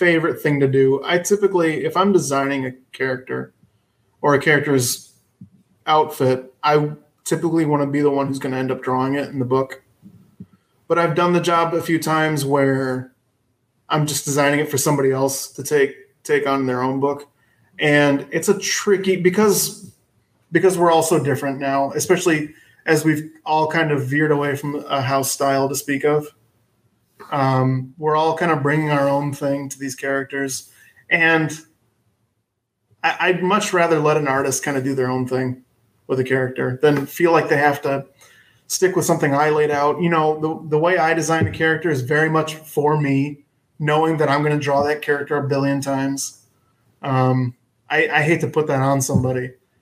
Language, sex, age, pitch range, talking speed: English, male, 20-39, 130-160 Hz, 185 wpm